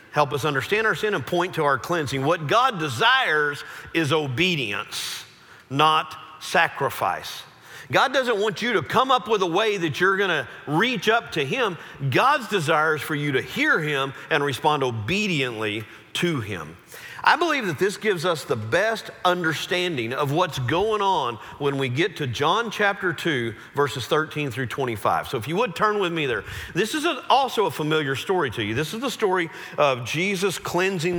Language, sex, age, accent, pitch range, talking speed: English, male, 50-69, American, 140-200 Hz, 185 wpm